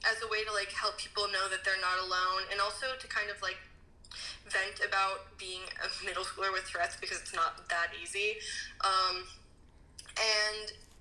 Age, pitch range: 10-29, 190-220 Hz